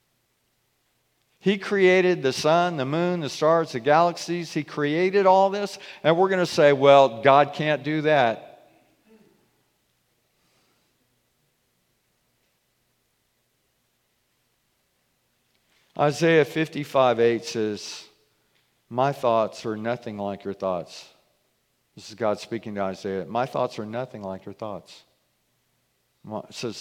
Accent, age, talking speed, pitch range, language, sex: American, 50-69, 110 wpm, 115-165 Hz, English, male